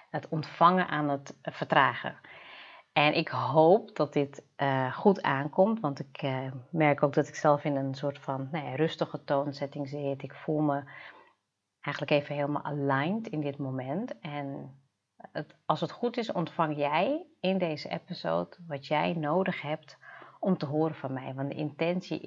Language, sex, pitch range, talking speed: Dutch, female, 140-165 Hz, 160 wpm